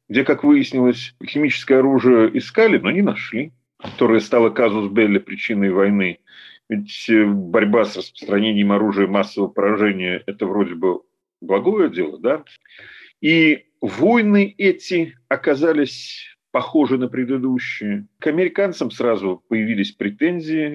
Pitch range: 110-155 Hz